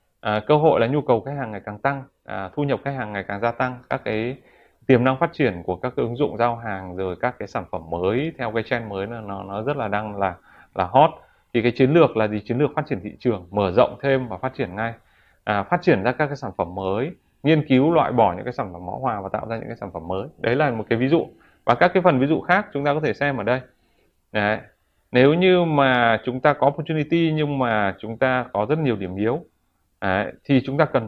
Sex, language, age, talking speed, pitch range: male, Vietnamese, 20-39, 270 wpm, 105-140 Hz